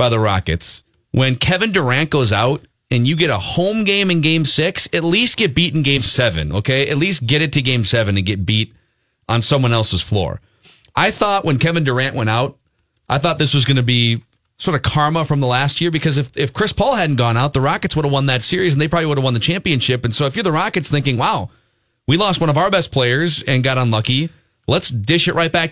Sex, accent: male, American